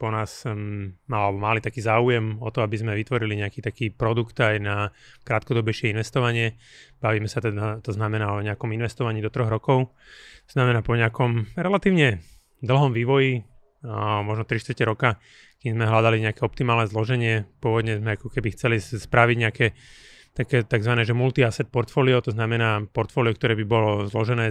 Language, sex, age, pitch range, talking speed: Slovak, male, 30-49, 110-125 Hz, 160 wpm